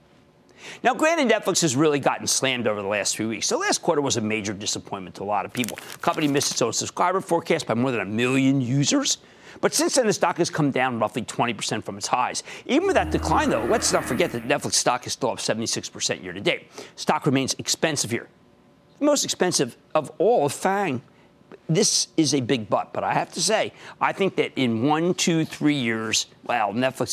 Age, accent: 50-69, American